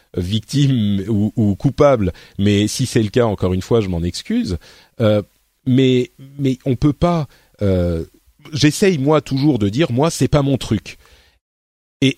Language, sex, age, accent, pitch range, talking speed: French, male, 40-59, French, 95-130 Hz, 165 wpm